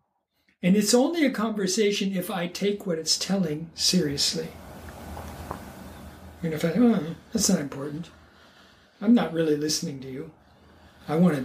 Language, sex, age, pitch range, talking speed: English, male, 60-79, 175-225 Hz, 145 wpm